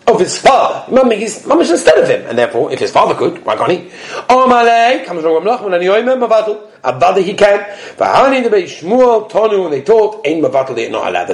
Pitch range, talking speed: 165-255 Hz, 115 wpm